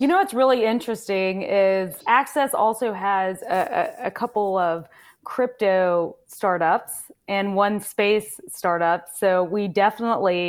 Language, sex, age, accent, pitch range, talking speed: English, female, 20-39, American, 180-215 Hz, 130 wpm